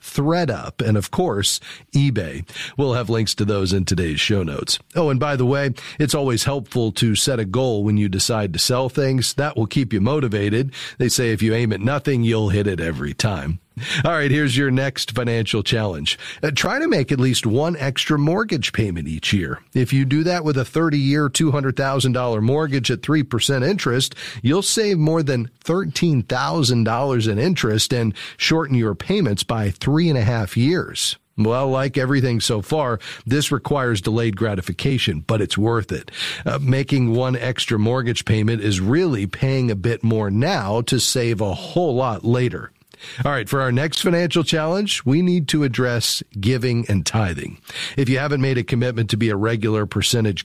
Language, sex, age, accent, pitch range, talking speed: English, male, 40-59, American, 110-145 Hz, 185 wpm